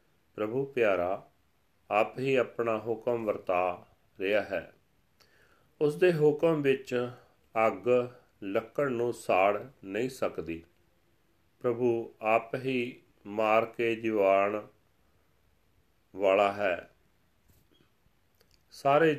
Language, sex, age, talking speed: Punjabi, male, 40-59, 90 wpm